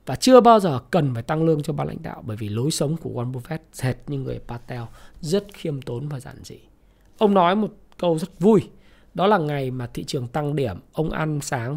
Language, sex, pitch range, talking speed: Vietnamese, male, 120-175 Hz, 235 wpm